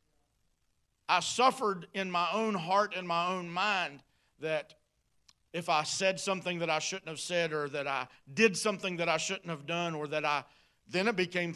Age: 50-69